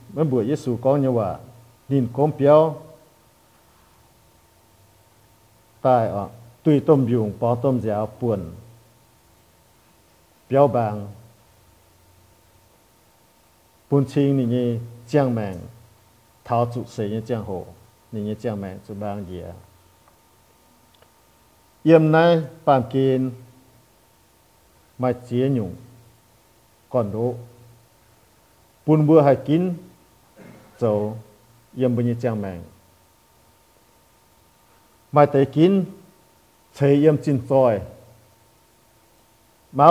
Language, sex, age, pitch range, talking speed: English, male, 50-69, 115-140 Hz, 40 wpm